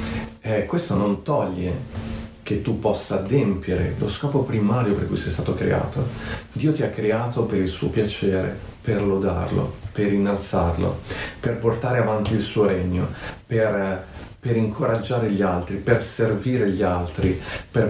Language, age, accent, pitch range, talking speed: Italian, 40-59, native, 100-115 Hz, 145 wpm